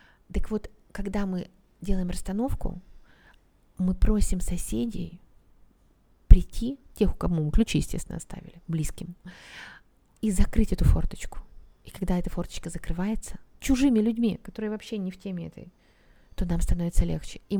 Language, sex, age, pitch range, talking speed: Russian, female, 30-49, 170-205 Hz, 135 wpm